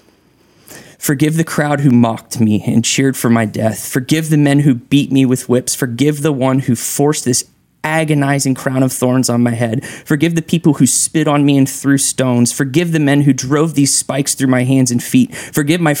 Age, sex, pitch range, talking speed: 20-39, male, 125-150 Hz, 210 wpm